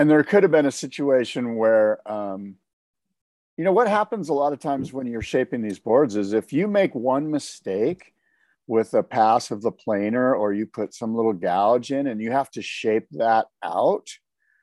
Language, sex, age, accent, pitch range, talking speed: English, male, 50-69, American, 105-135 Hz, 195 wpm